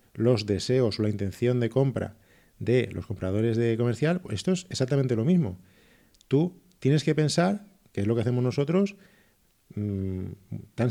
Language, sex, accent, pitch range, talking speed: Spanish, male, Spanish, 105-140 Hz, 155 wpm